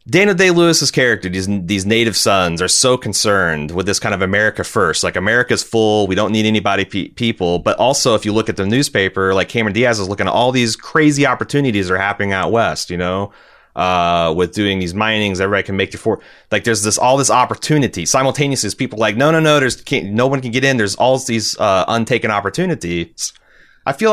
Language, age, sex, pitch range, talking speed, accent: English, 30-49, male, 95-130 Hz, 215 wpm, American